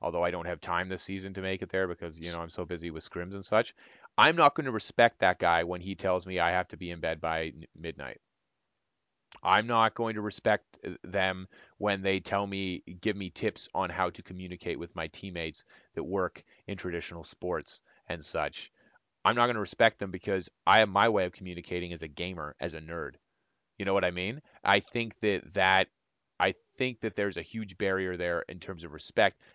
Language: English